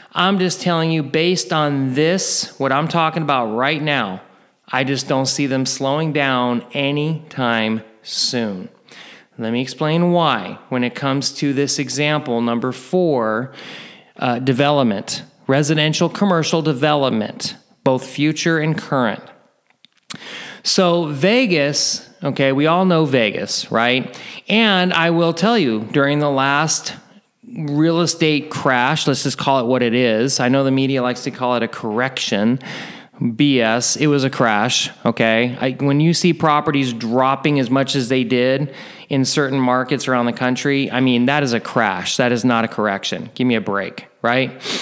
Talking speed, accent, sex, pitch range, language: 155 wpm, American, male, 125-155 Hz, English